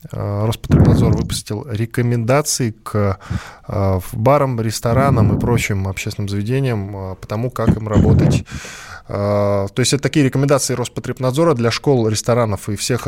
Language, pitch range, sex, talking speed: Russian, 100-125 Hz, male, 120 wpm